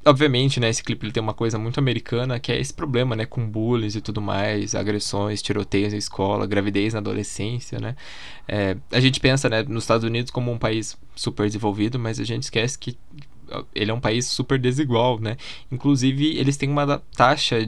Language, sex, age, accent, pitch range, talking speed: Portuguese, male, 10-29, Brazilian, 110-135 Hz, 195 wpm